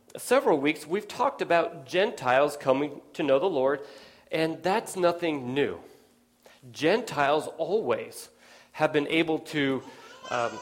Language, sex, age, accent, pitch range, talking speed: English, male, 40-59, American, 140-190 Hz, 125 wpm